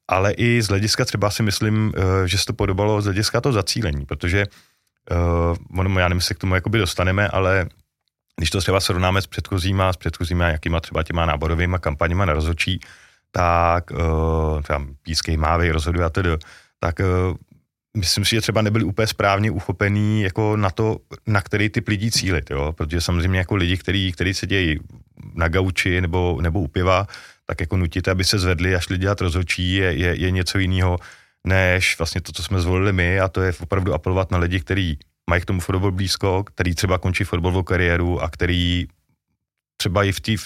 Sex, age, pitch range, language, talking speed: male, 30-49, 85-100 Hz, Czech, 180 wpm